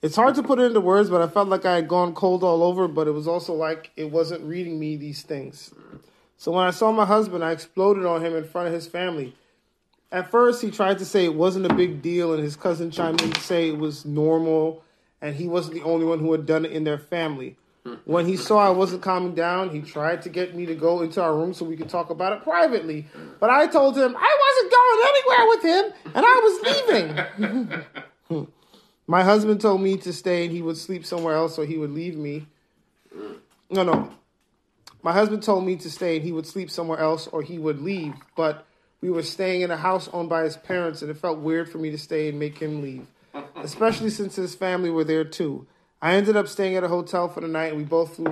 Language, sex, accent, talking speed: English, male, American, 240 wpm